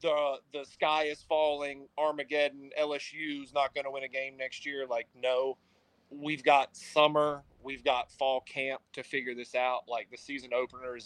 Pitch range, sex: 125-150 Hz, male